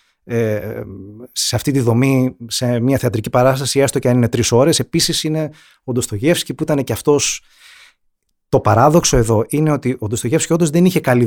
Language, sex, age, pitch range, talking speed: Greek, male, 30-49, 110-150 Hz, 180 wpm